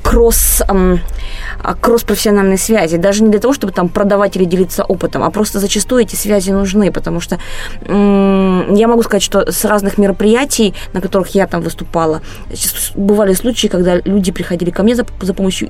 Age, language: 20-39, Russian